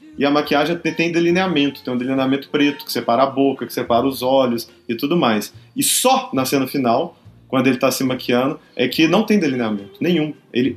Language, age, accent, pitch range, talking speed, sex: Portuguese, 20-39, Brazilian, 120-160 Hz, 205 wpm, male